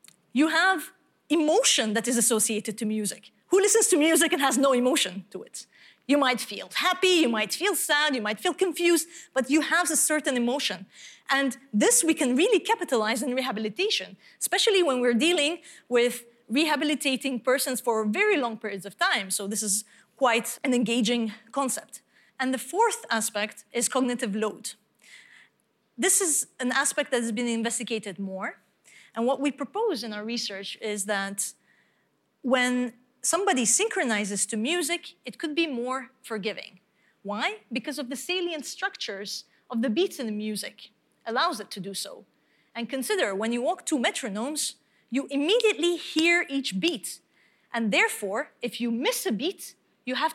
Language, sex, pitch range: Dutch, female, 220-320 Hz